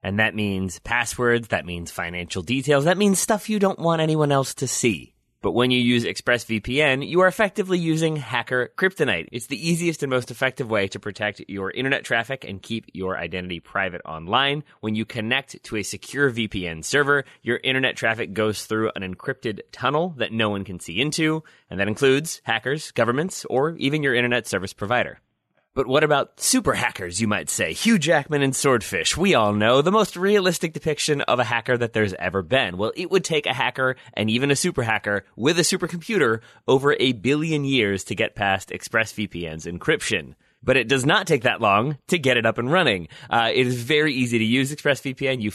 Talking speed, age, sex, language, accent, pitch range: 200 wpm, 30-49, male, English, American, 105-145 Hz